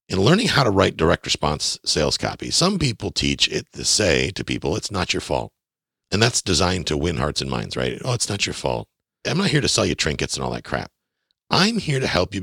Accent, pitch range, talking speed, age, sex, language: American, 85-135 Hz, 245 wpm, 50-69, male, English